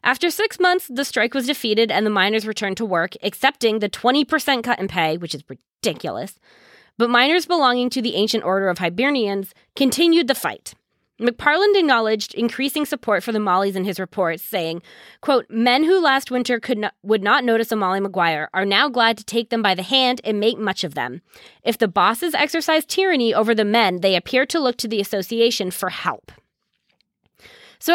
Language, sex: English, female